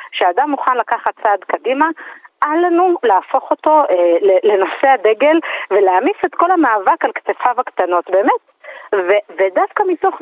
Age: 40-59